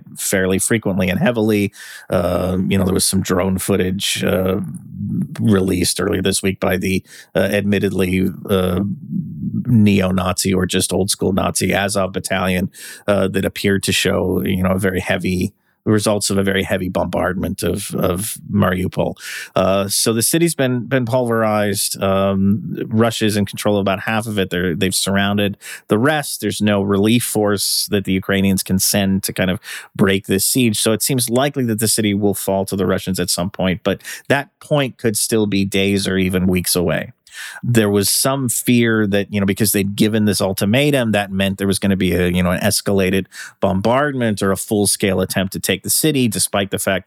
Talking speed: 185 wpm